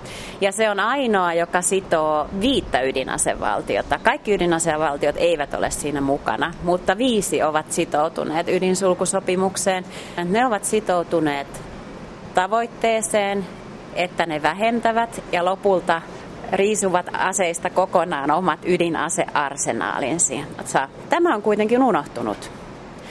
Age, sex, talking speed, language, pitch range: 30-49, female, 95 wpm, Finnish, 165-205 Hz